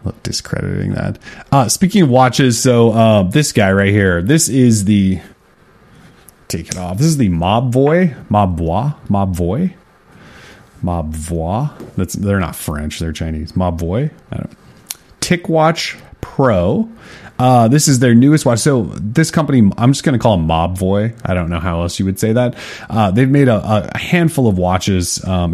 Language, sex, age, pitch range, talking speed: English, male, 30-49, 95-120 Hz, 165 wpm